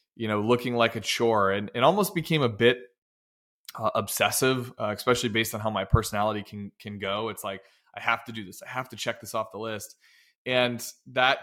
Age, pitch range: 20-39, 110-130 Hz